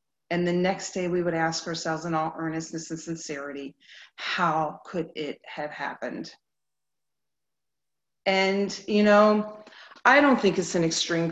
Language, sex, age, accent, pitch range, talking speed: English, female, 40-59, American, 165-220 Hz, 145 wpm